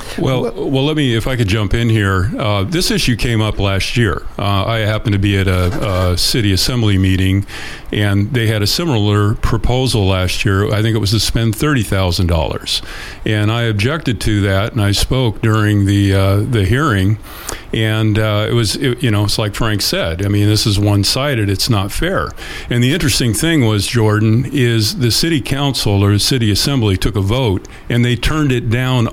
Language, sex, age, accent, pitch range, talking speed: English, male, 50-69, American, 100-115 Hz, 200 wpm